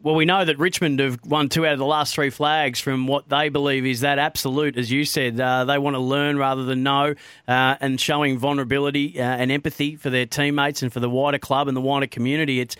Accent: Australian